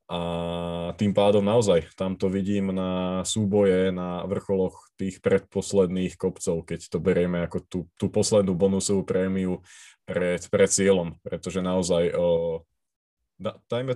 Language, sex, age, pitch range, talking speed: Slovak, male, 20-39, 90-100 Hz, 130 wpm